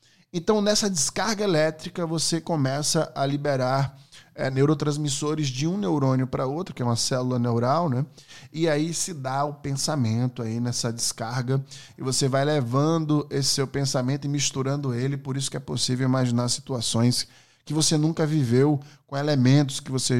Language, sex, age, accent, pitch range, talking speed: Portuguese, male, 10-29, Brazilian, 120-150 Hz, 165 wpm